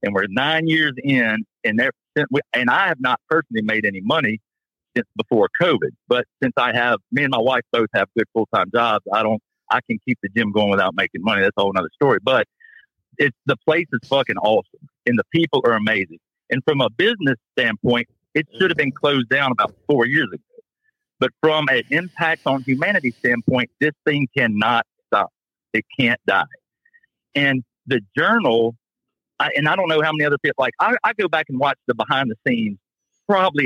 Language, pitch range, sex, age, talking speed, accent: English, 115-160 Hz, male, 50-69, 195 wpm, American